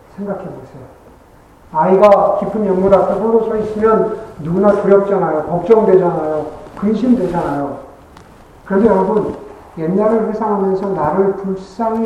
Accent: native